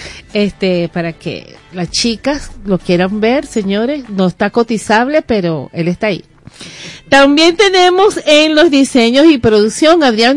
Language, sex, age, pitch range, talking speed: Spanish, female, 40-59, 200-285 Hz, 140 wpm